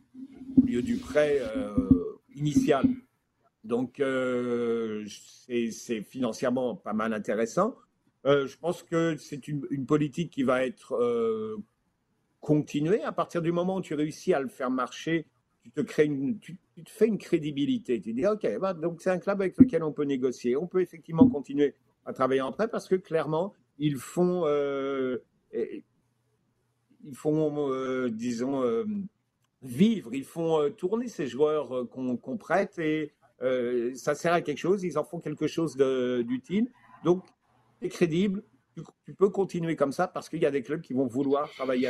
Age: 50-69